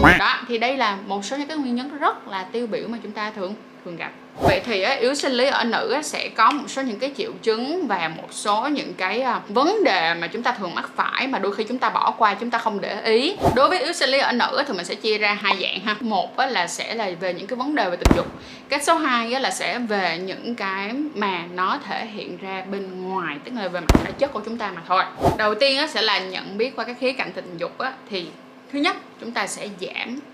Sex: female